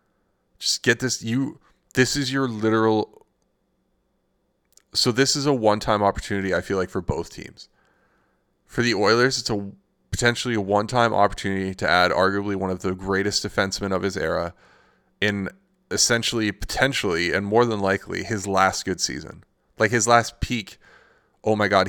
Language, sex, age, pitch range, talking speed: English, male, 20-39, 95-120 Hz, 160 wpm